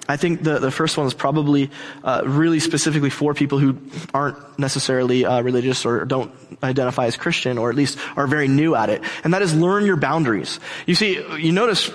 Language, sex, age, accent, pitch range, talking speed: English, male, 20-39, American, 140-185 Hz, 205 wpm